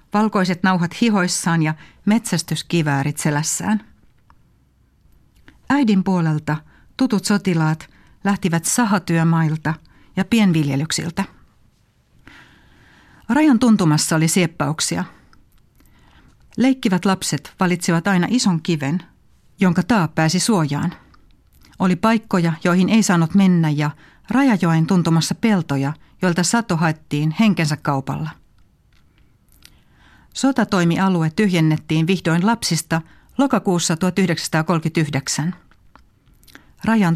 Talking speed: 80 wpm